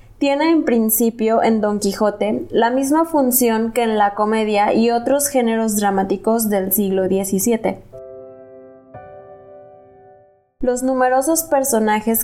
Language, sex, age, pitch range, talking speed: Spanish, female, 20-39, 210-250 Hz, 115 wpm